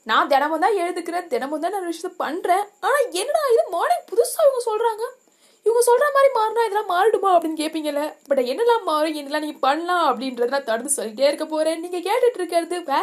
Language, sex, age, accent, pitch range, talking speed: Tamil, female, 20-39, native, 310-415 Hz, 45 wpm